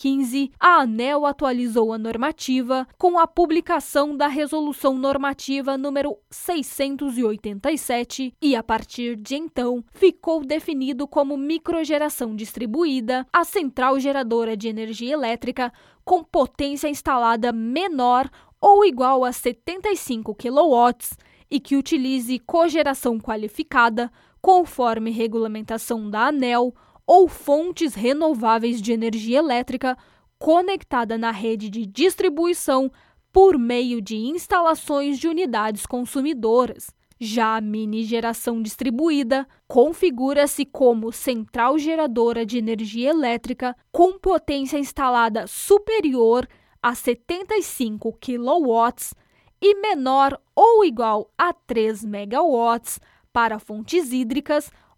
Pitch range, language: 235-305 Hz, Portuguese